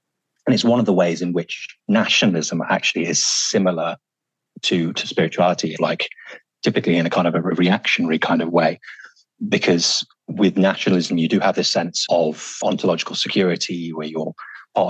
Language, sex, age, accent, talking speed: English, male, 30-49, British, 160 wpm